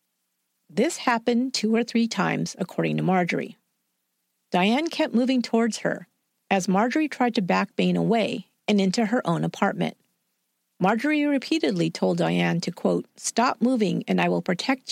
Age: 40-59